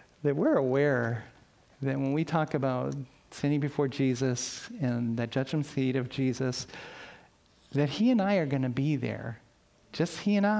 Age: 40-59